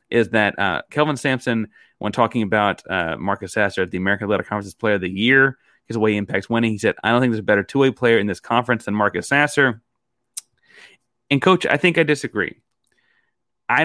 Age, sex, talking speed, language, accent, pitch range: 30-49, male, 210 wpm, English, American, 100-125 Hz